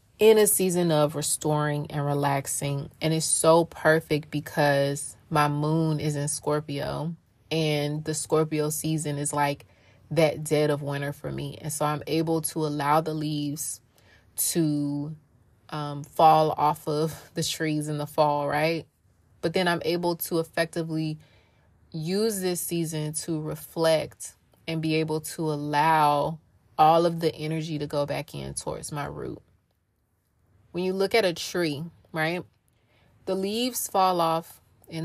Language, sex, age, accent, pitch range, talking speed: English, female, 20-39, American, 145-165 Hz, 150 wpm